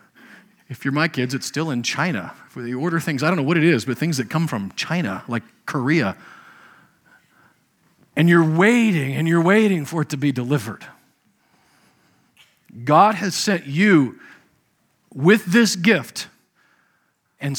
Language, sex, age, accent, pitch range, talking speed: English, male, 40-59, American, 135-180 Hz, 155 wpm